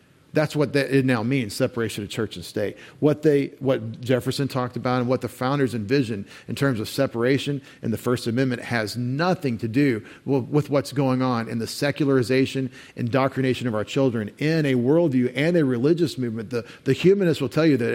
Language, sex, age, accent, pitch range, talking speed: English, male, 40-59, American, 120-145 Hz, 195 wpm